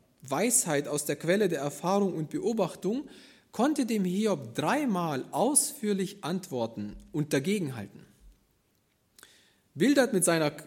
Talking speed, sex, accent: 105 wpm, male, German